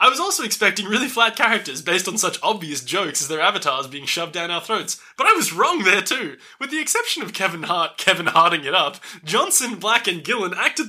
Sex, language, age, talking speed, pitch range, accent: male, English, 20-39, 225 wpm, 175-290 Hz, Australian